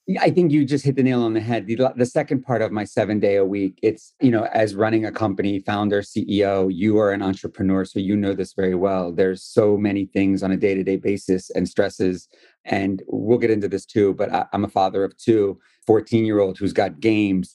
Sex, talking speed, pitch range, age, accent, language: male, 235 wpm, 100-115 Hz, 30-49, American, English